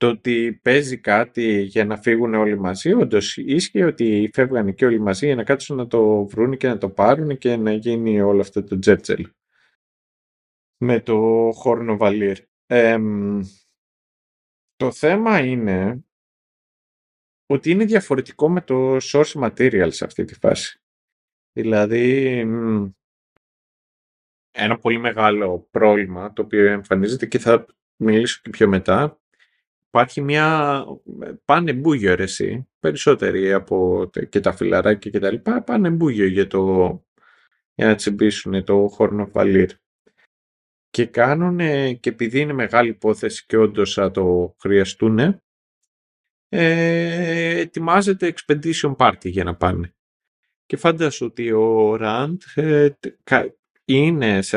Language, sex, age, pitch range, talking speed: Greek, male, 30-49, 100-140 Hz, 125 wpm